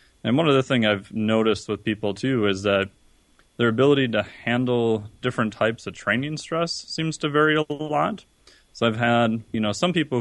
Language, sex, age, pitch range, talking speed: English, male, 30-49, 100-115 Hz, 190 wpm